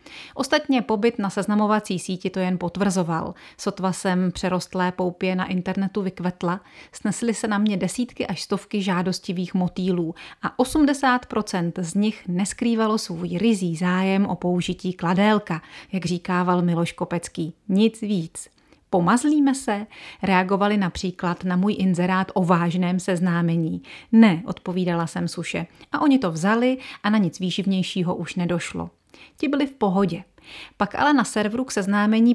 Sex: female